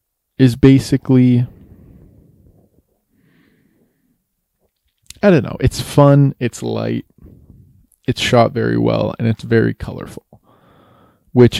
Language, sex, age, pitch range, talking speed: English, male, 20-39, 105-125 Hz, 95 wpm